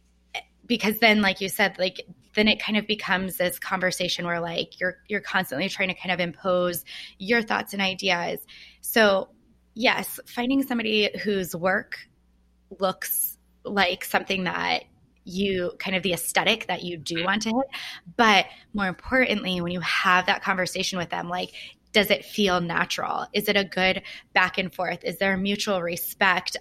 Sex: female